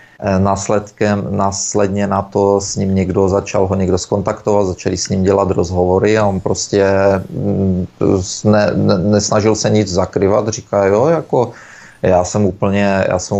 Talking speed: 150 wpm